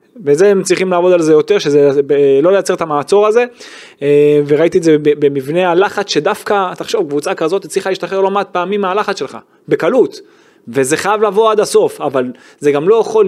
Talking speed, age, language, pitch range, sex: 180 wpm, 20-39, Hebrew, 150-210 Hz, male